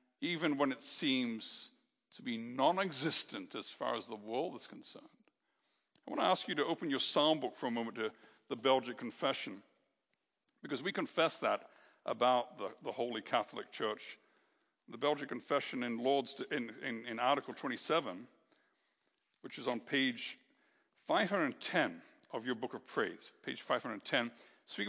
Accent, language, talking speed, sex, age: American, English, 150 wpm, male, 60-79